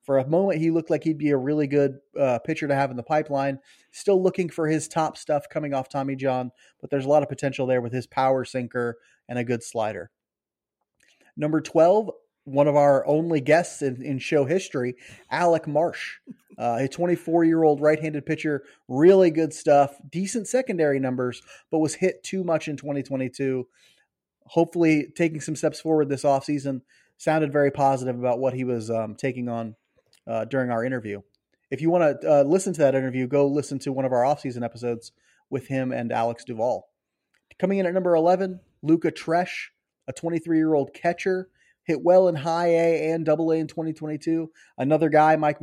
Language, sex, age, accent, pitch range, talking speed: English, male, 30-49, American, 130-160 Hz, 190 wpm